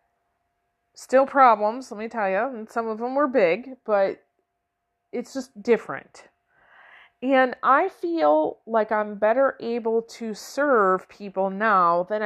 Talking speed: 135 wpm